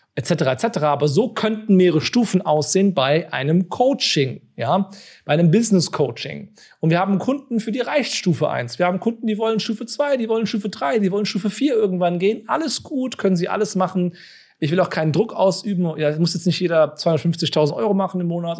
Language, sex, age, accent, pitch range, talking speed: German, male, 40-59, German, 155-210 Hz, 205 wpm